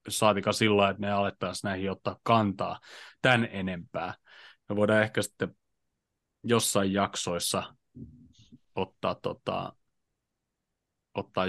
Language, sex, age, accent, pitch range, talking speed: Finnish, male, 30-49, native, 100-120 Hz, 105 wpm